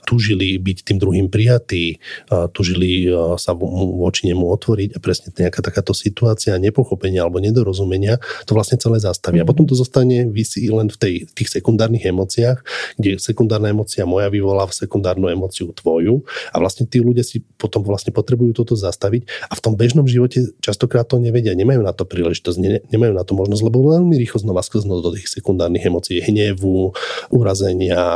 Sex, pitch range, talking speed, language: male, 95-125 Hz, 170 wpm, Slovak